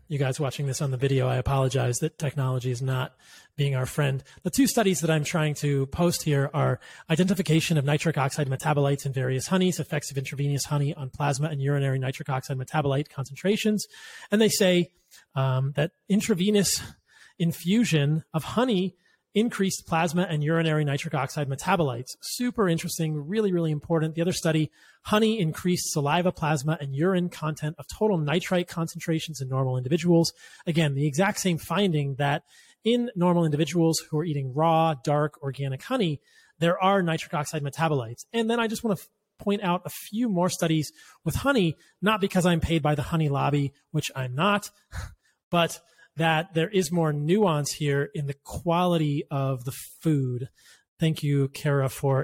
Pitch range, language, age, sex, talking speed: 140-175 Hz, English, 30-49, male, 170 wpm